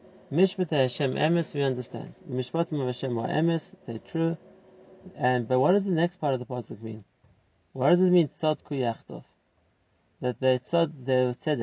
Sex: male